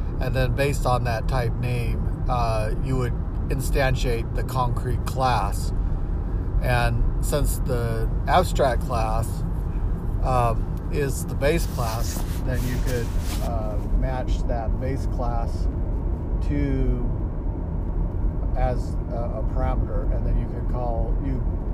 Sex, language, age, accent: male, English, 50-69, American